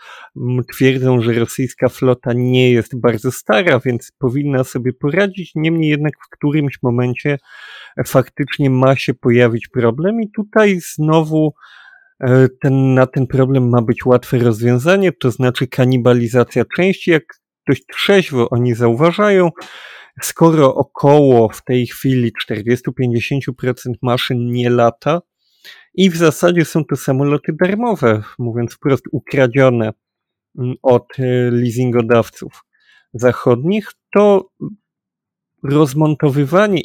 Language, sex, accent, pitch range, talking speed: Polish, male, native, 120-145 Hz, 105 wpm